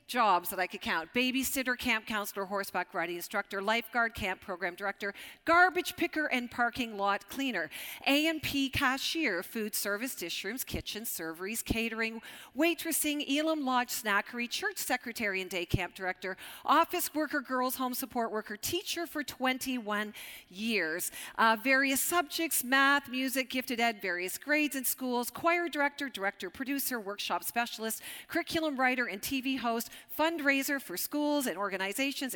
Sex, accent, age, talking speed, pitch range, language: female, American, 40-59, 140 wpm, 215-290 Hz, English